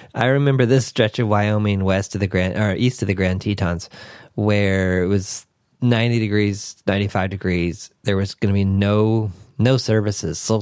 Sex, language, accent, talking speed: male, English, American, 175 wpm